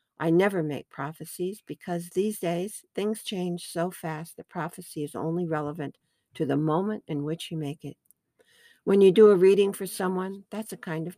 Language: English